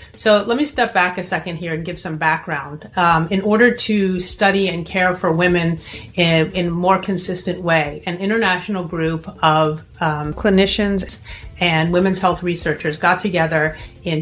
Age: 30-49